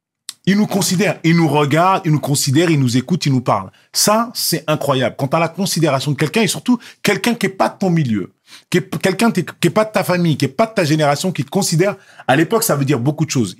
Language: French